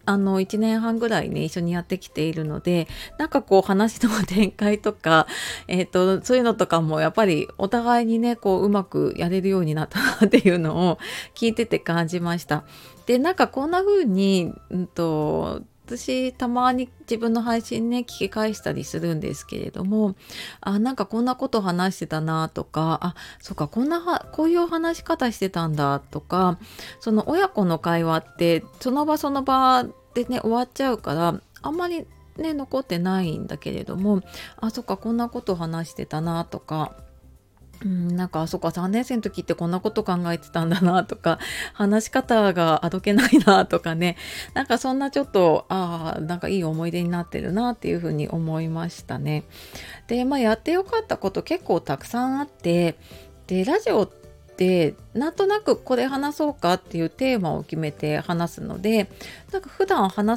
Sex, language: female, Japanese